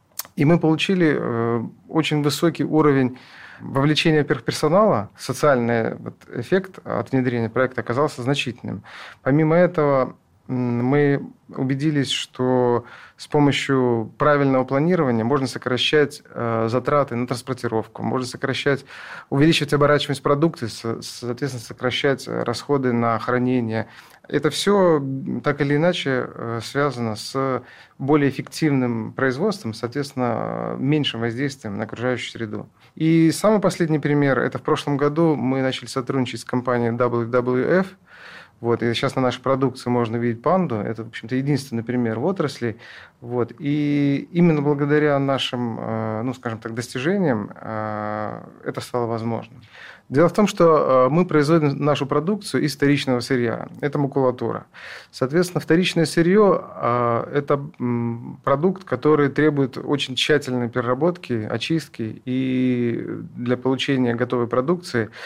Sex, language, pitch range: male, Russian, 120-150 Hz